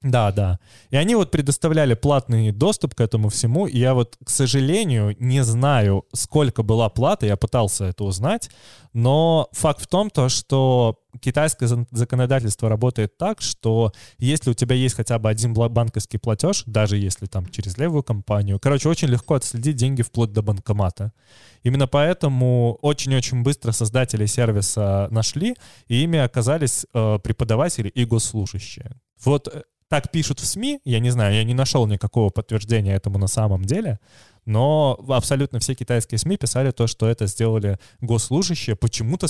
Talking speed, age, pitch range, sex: 155 wpm, 20-39, 110-135 Hz, male